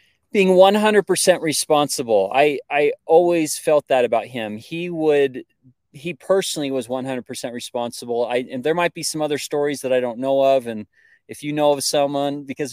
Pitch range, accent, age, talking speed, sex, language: 120-155 Hz, American, 30-49, 175 wpm, male, English